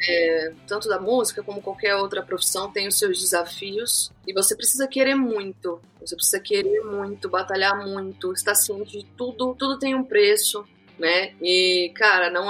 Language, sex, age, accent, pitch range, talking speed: Portuguese, female, 20-39, Brazilian, 190-245 Hz, 175 wpm